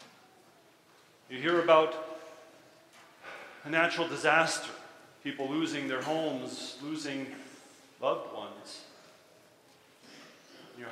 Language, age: English, 40-59